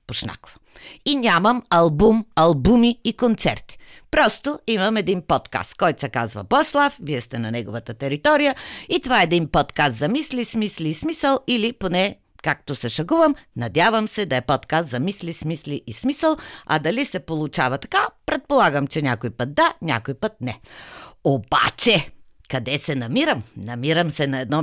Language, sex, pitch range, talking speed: Bulgarian, female, 140-220 Hz, 160 wpm